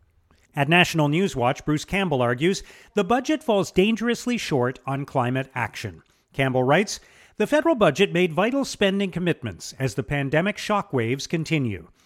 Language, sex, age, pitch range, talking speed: English, male, 50-69, 125-185 Hz, 145 wpm